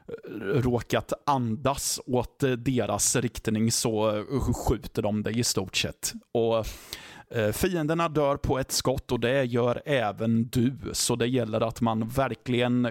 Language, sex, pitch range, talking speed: Swedish, male, 110-135 Hz, 135 wpm